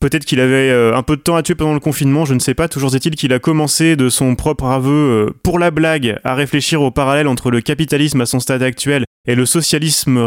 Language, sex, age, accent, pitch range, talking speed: French, male, 20-39, French, 120-145 Hz, 245 wpm